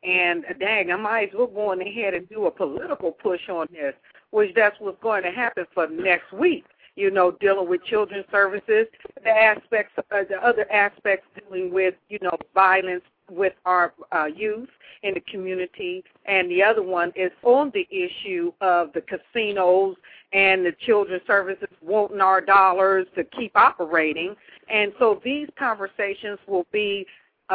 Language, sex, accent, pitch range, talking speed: English, female, American, 185-245 Hz, 170 wpm